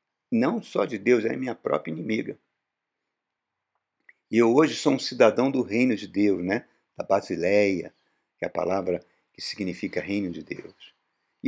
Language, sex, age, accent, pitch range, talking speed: Portuguese, male, 50-69, Brazilian, 100-130 Hz, 160 wpm